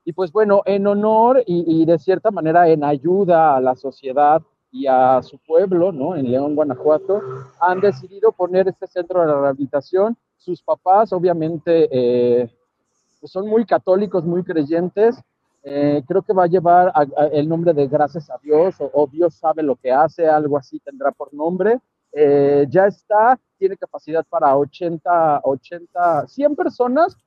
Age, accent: 40-59, Mexican